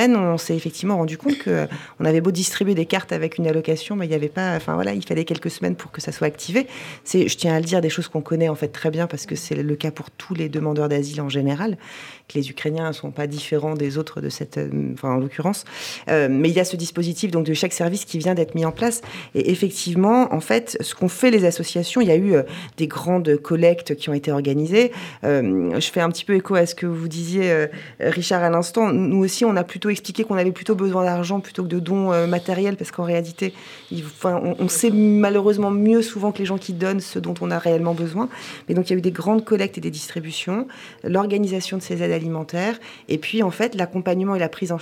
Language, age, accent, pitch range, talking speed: French, 40-59, French, 160-195 Hz, 250 wpm